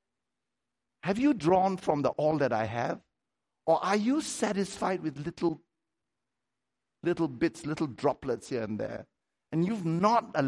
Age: 60-79